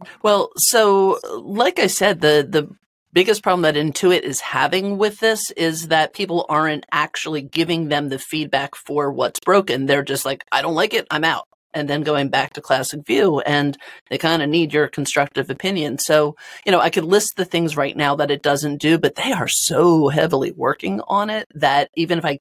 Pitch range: 140-175 Hz